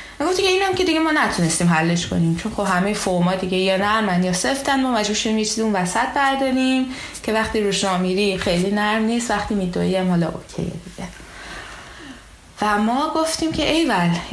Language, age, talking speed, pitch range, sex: Persian, 20-39, 180 wpm, 180-245 Hz, female